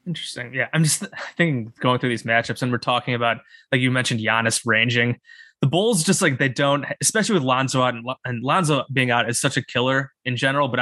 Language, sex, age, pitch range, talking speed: English, male, 20-39, 125-160 Hz, 220 wpm